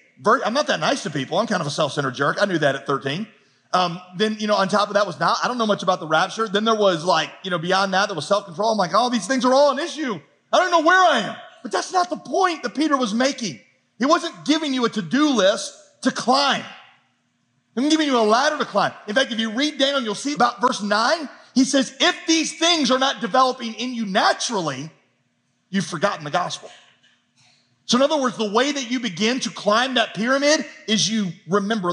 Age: 40-59